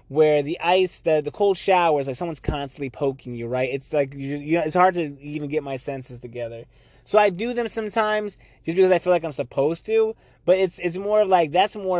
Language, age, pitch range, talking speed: English, 20-39, 130-165 Hz, 220 wpm